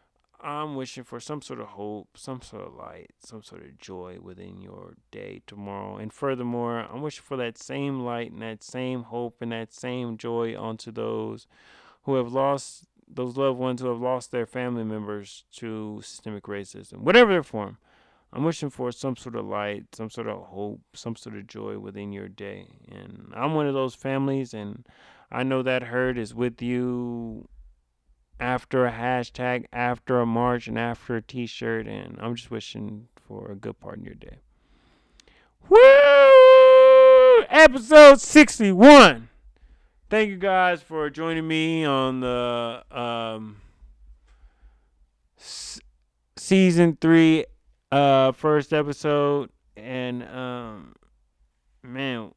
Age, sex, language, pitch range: 20-39, male, English, 110-140 Hz